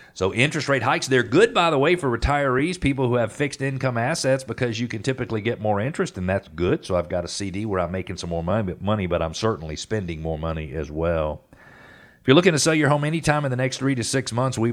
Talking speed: 260 wpm